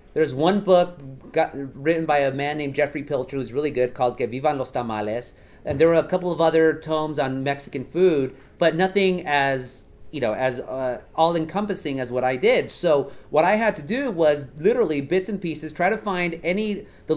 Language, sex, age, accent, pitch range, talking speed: English, male, 30-49, American, 140-180 Hz, 190 wpm